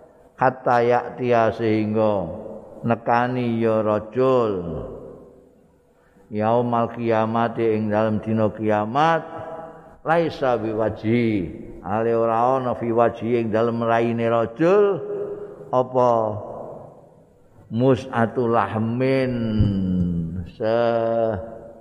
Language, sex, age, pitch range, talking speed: Indonesian, male, 50-69, 105-125 Hz, 75 wpm